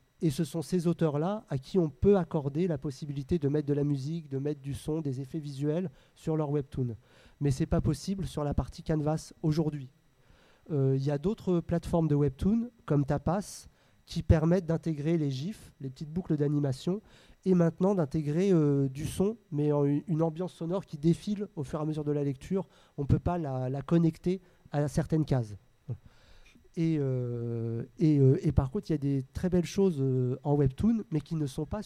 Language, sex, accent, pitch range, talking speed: French, male, French, 140-165 Hz, 200 wpm